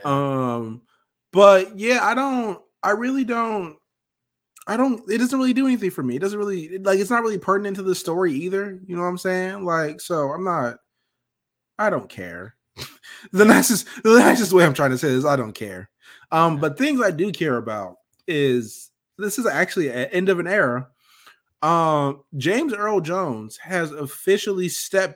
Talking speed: 185 wpm